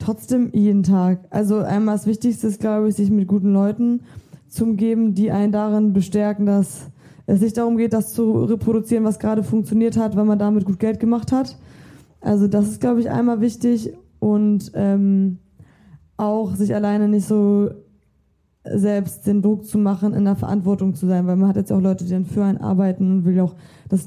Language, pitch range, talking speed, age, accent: German, 190-220 Hz, 195 wpm, 20-39, German